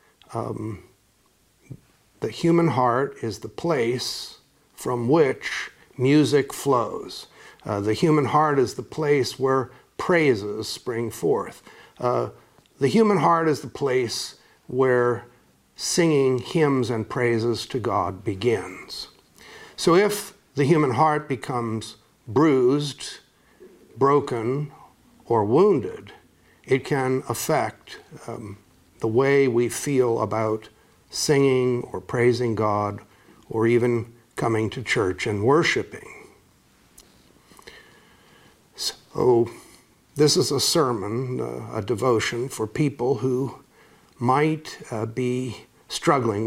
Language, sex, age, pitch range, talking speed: English, male, 60-79, 115-140 Hz, 105 wpm